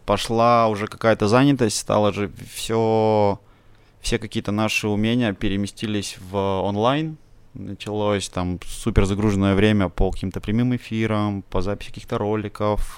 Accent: native